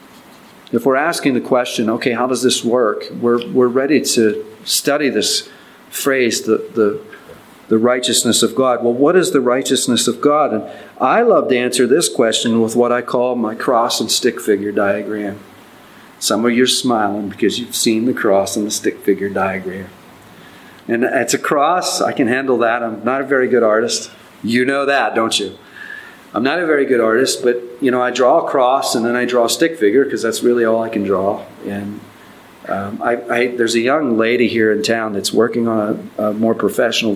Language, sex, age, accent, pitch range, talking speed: English, male, 40-59, American, 110-125 Hz, 205 wpm